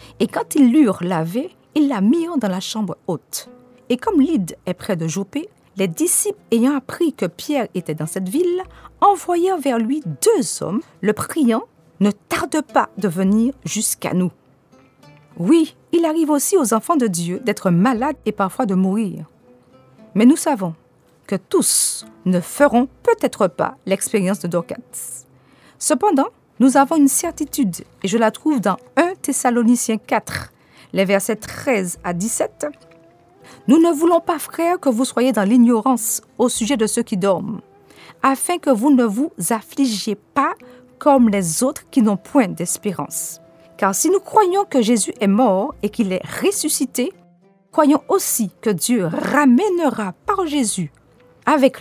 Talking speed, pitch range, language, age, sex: 160 wpm, 190-285 Hz, French, 40-59, female